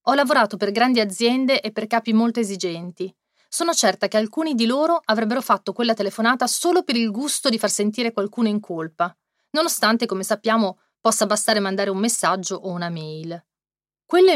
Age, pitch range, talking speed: 30-49, 185-250 Hz, 175 wpm